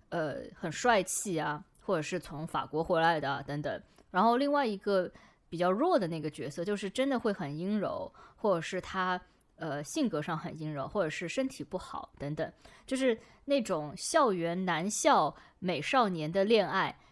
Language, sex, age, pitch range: Chinese, female, 20-39, 160-225 Hz